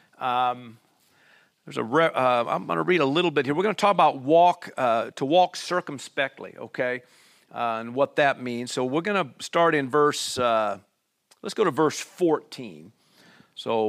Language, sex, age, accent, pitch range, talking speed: English, male, 50-69, American, 120-160 Hz, 185 wpm